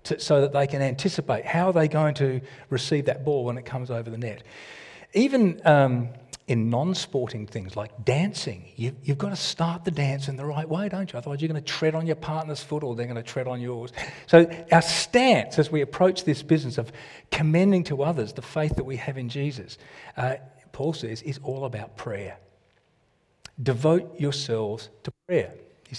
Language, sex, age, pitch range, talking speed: English, male, 40-59, 125-165 Hz, 200 wpm